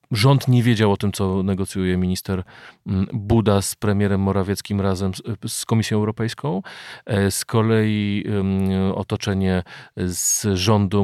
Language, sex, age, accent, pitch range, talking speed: Polish, male, 40-59, native, 95-115 Hz, 115 wpm